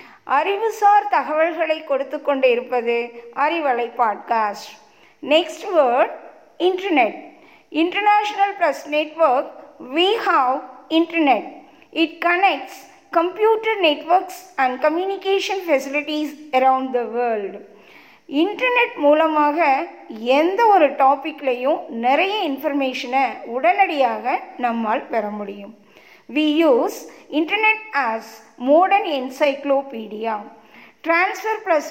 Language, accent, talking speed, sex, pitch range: Tamil, native, 85 wpm, female, 255-350 Hz